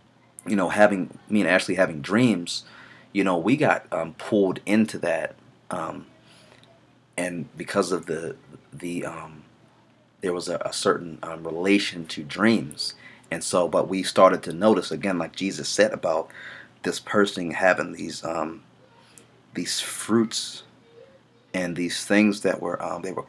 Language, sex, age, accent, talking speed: English, male, 30-49, American, 150 wpm